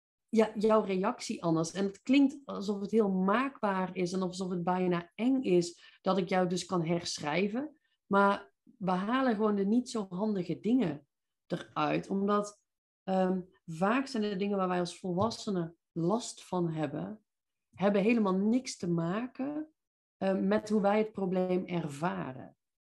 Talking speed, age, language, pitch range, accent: 145 wpm, 40-59, Dutch, 180-220 Hz, Dutch